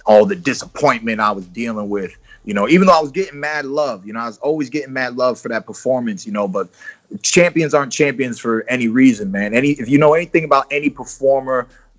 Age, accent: 30-49, American